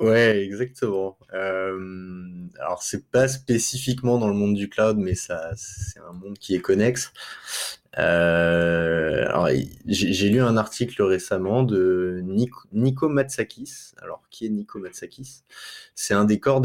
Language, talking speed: French, 150 wpm